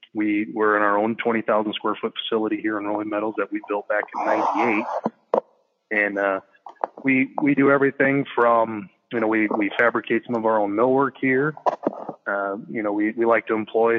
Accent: American